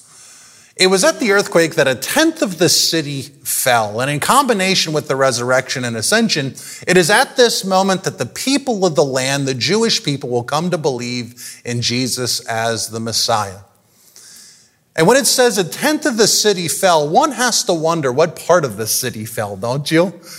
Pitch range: 120-195 Hz